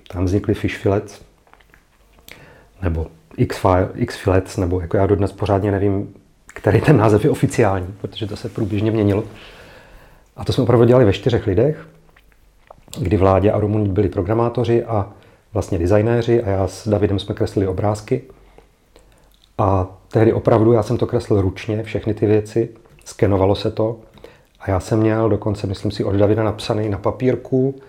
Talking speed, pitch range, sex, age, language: 155 wpm, 100-115 Hz, male, 40-59, Czech